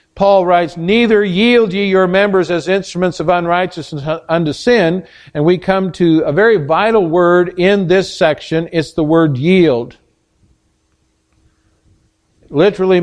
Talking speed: 140 wpm